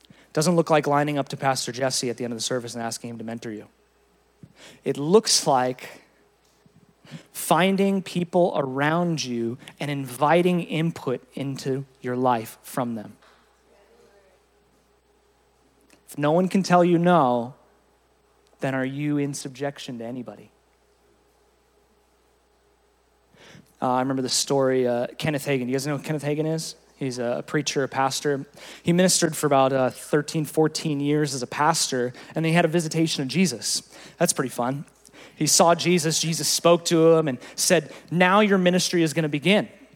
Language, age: English, 30-49